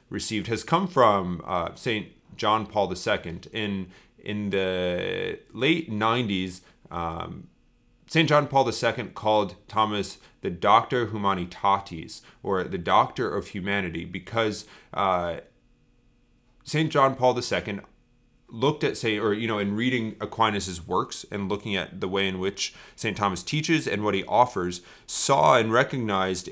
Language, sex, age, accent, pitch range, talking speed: English, male, 30-49, American, 90-115 Hz, 140 wpm